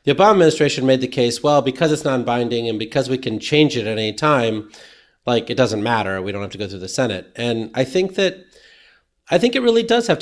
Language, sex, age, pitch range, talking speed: English, male, 30-49, 115-150 Hz, 240 wpm